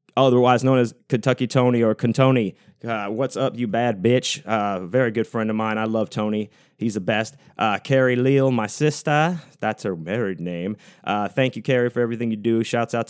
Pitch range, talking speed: 110-130 Hz, 200 wpm